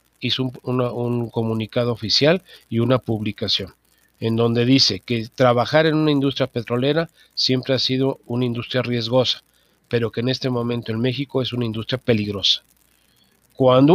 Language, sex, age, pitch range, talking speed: Spanish, male, 50-69, 115-140 Hz, 150 wpm